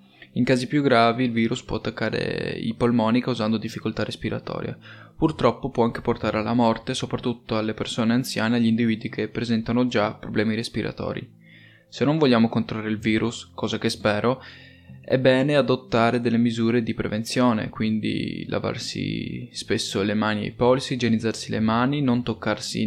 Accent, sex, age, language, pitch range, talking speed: native, male, 20-39, Italian, 110-125 Hz, 155 wpm